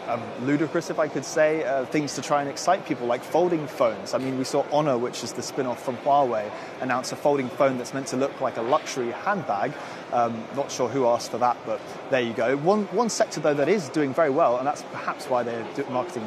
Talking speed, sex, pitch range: 240 wpm, male, 120-155 Hz